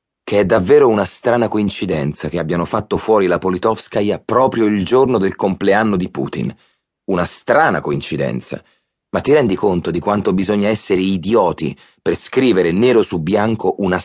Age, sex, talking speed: 30-49, male, 160 wpm